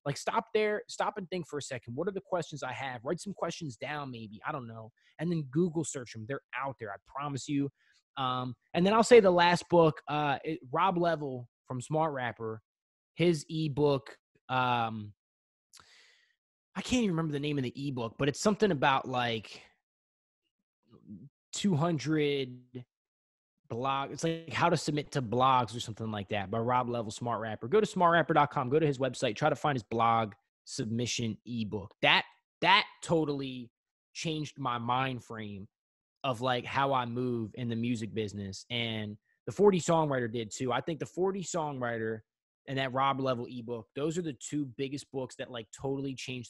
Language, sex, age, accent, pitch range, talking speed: English, male, 20-39, American, 120-155 Hz, 180 wpm